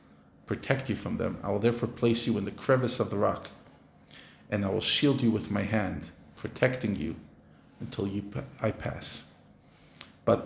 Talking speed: 165 wpm